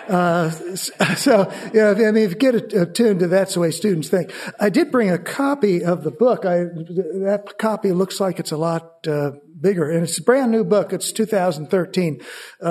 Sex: male